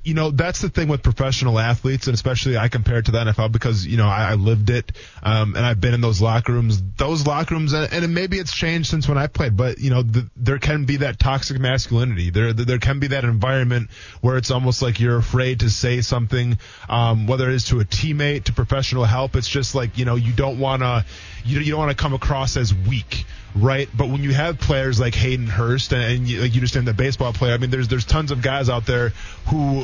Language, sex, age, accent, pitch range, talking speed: English, male, 20-39, American, 115-140 Hz, 245 wpm